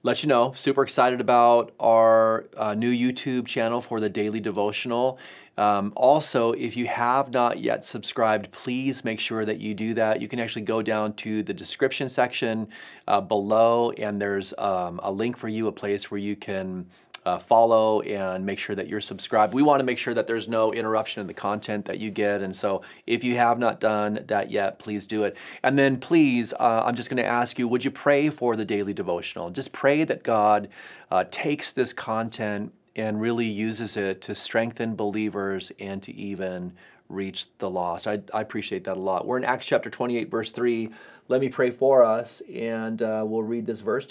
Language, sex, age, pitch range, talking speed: English, male, 30-49, 105-125 Hz, 205 wpm